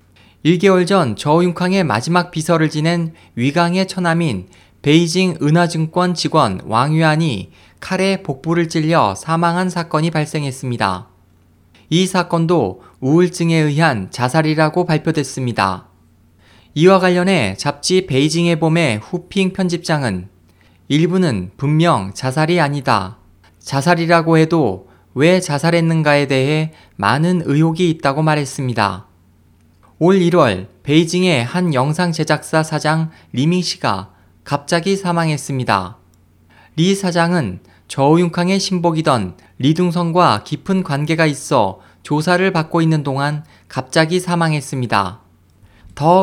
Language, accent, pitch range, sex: Korean, native, 105-175 Hz, male